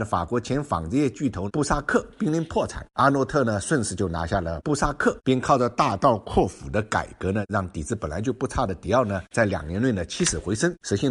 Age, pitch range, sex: 50-69, 90-120 Hz, male